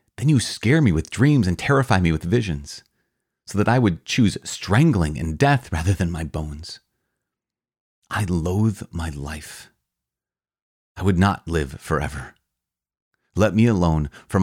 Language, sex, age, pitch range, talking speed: English, male, 30-49, 80-115 Hz, 150 wpm